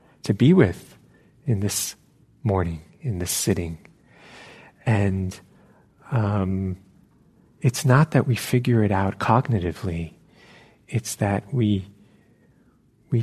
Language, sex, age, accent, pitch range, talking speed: English, male, 40-59, American, 95-130 Hz, 105 wpm